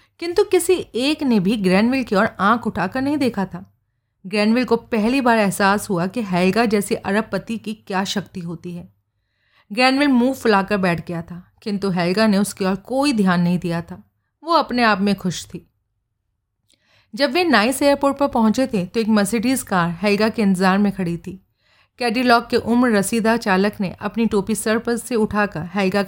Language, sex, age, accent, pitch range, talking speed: Hindi, female, 30-49, native, 180-230 Hz, 180 wpm